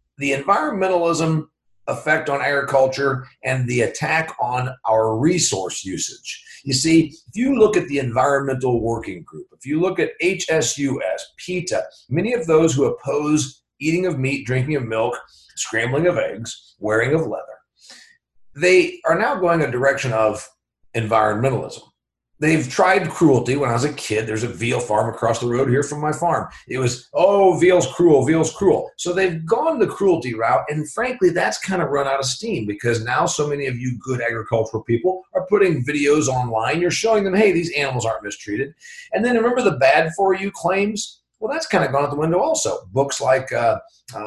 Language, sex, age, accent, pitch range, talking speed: English, male, 50-69, American, 125-175 Hz, 185 wpm